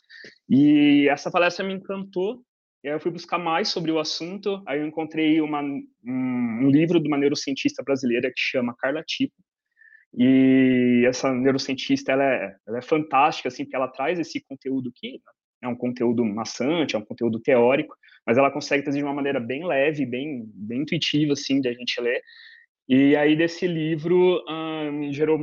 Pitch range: 130-175 Hz